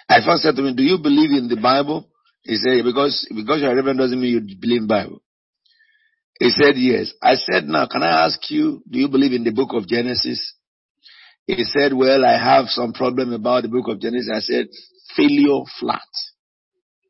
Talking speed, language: 205 wpm, English